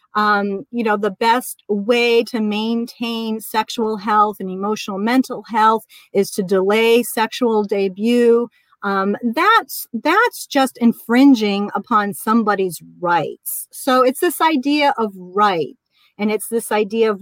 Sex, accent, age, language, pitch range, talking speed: female, American, 40-59, English, 210-260 Hz, 130 wpm